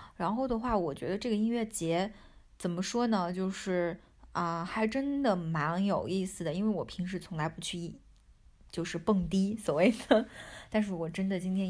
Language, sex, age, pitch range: Chinese, female, 20-39, 165-200 Hz